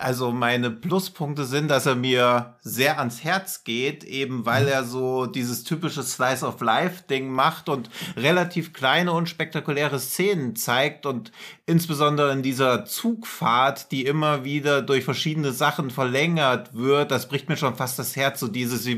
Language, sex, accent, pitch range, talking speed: German, male, German, 125-150 Hz, 155 wpm